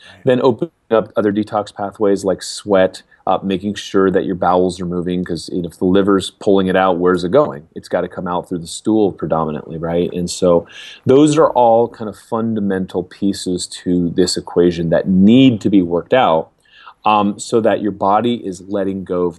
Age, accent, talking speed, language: 30-49, American, 200 wpm, English